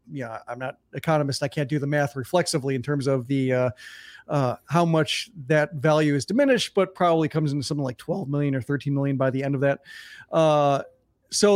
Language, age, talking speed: English, 40-59, 210 wpm